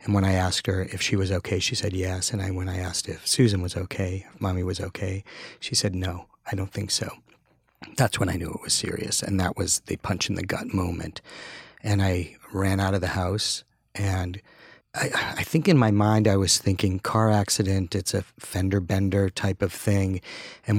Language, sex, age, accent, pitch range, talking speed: English, male, 40-59, American, 95-100 Hz, 215 wpm